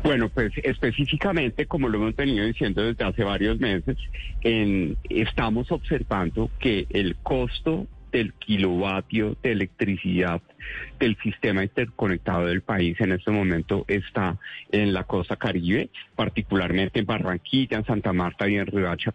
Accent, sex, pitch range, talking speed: Colombian, male, 95-120 Hz, 140 wpm